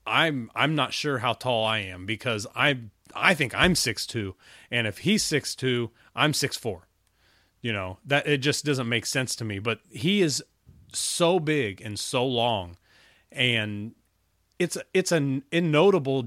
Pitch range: 110-140 Hz